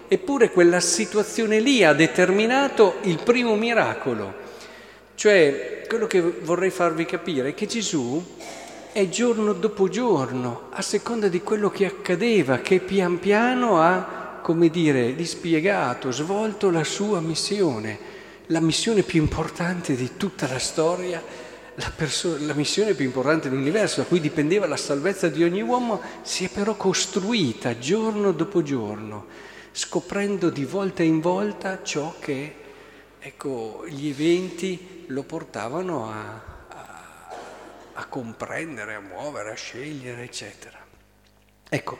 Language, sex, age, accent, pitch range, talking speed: Italian, male, 50-69, native, 135-200 Hz, 130 wpm